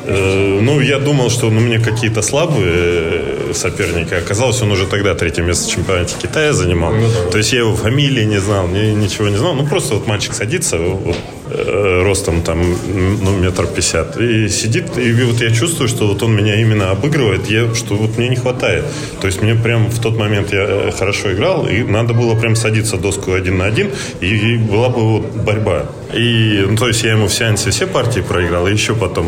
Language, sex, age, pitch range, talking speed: Russian, male, 20-39, 95-115 Hz, 195 wpm